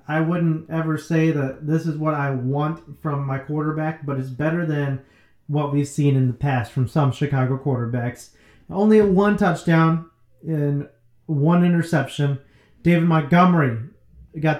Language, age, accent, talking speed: English, 30-49, American, 150 wpm